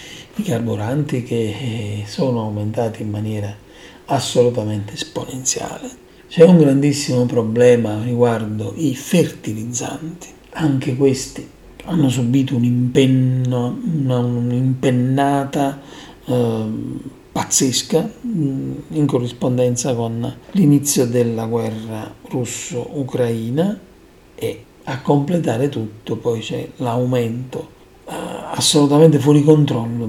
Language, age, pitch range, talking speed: Italian, 40-59, 120-155 Hz, 80 wpm